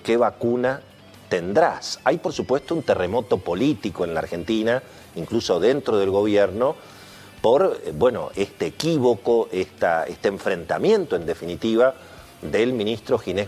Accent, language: Argentinian, Spanish